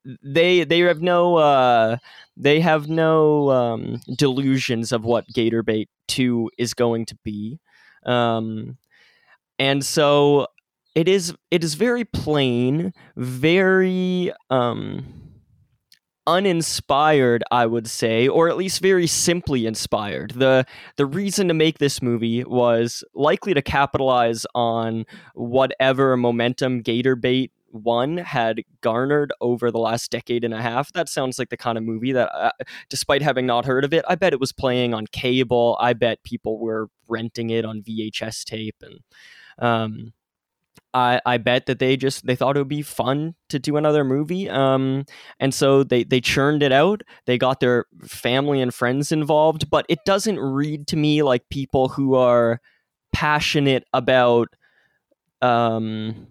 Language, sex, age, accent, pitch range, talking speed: English, male, 20-39, American, 120-150 Hz, 150 wpm